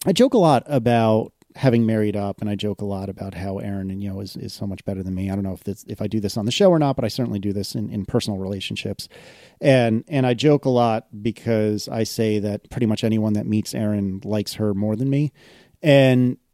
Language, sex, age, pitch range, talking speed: English, male, 30-49, 105-130 Hz, 260 wpm